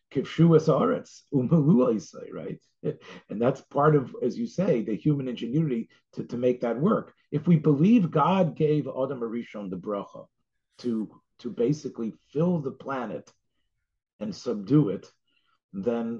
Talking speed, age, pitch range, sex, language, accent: 145 wpm, 40-59, 95-150 Hz, male, English, American